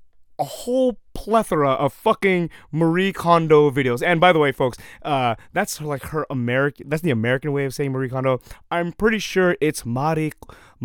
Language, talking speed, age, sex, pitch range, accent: English, 170 wpm, 30-49, male, 120-180 Hz, American